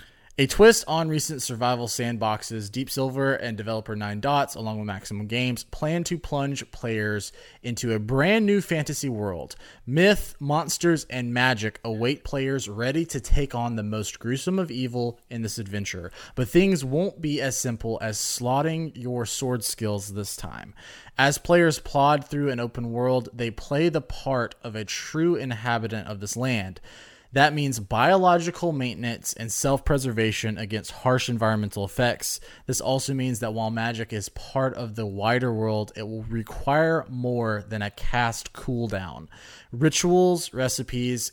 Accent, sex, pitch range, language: American, male, 110-140 Hz, English